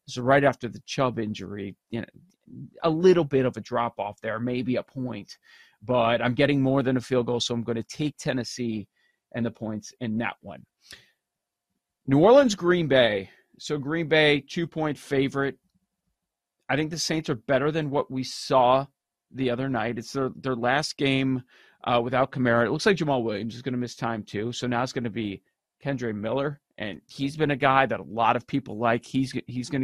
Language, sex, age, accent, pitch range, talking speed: English, male, 40-59, American, 115-145 Hz, 205 wpm